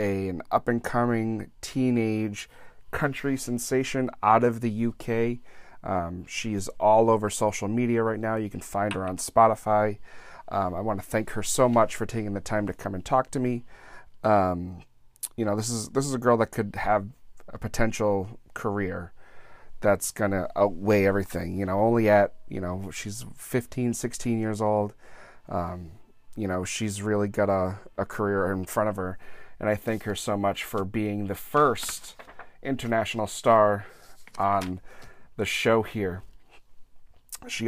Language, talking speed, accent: English, 165 wpm, American